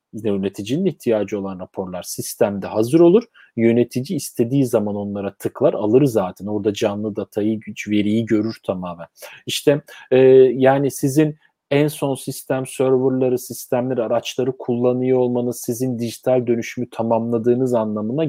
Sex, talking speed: male, 120 wpm